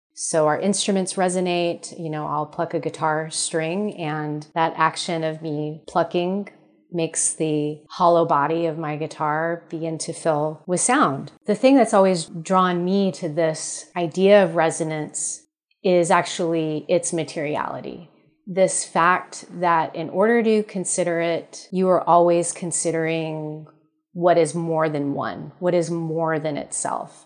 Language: English